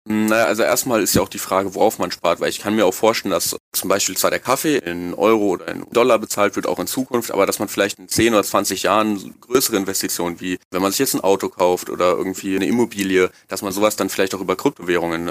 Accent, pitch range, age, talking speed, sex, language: German, 90-105 Hz, 30-49, 250 wpm, male, German